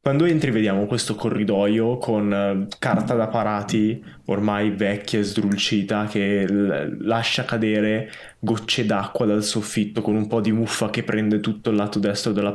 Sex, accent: male, native